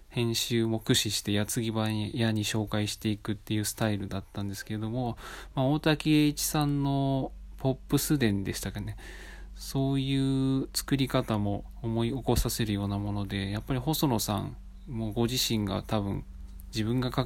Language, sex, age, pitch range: Japanese, male, 20-39, 100-125 Hz